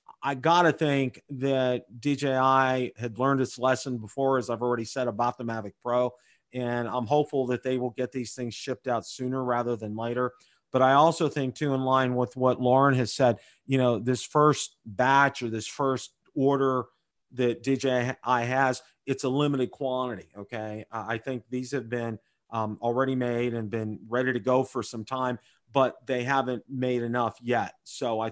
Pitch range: 120-140 Hz